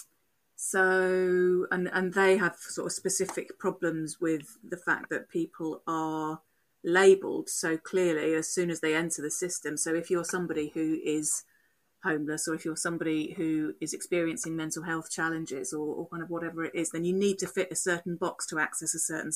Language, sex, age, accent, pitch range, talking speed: English, female, 30-49, British, 160-180 Hz, 190 wpm